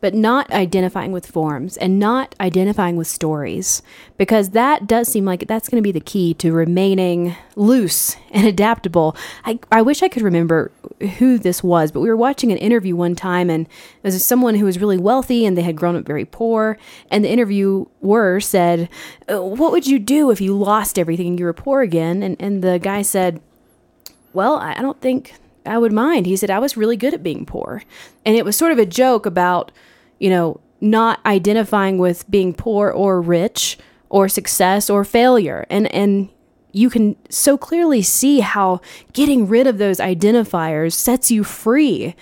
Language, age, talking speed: English, 20-39, 190 wpm